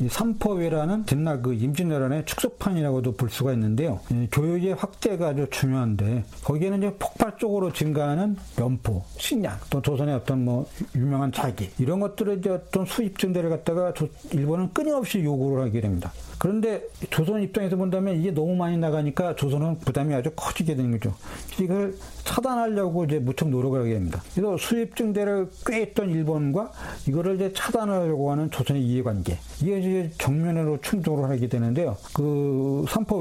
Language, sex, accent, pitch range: Korean, male, native, 130-180 Hz